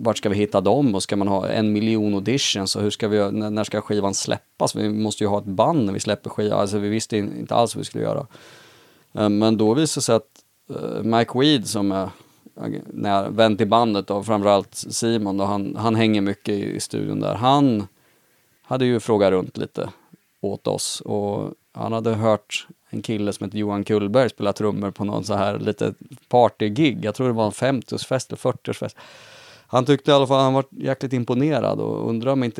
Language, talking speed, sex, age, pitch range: Swedish, 205 wpm, male, 30-49, 105-135 Hz